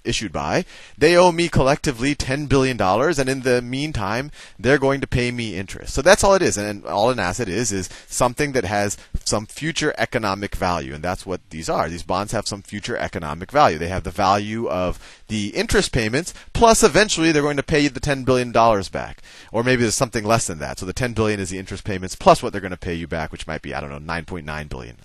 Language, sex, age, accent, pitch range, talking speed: English, male, 30-49, American, 90-130 Hz, 235 wpm